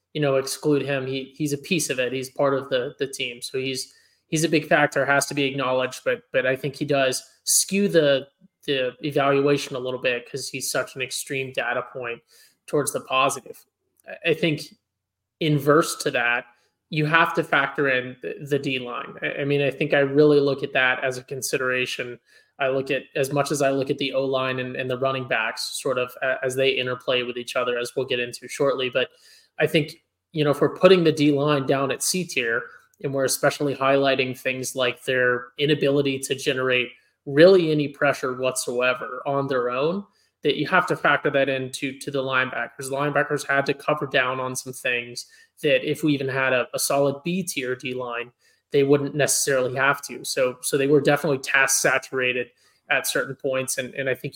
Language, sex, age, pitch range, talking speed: English, male, 20-39, 130-145 Hz, 200 wpm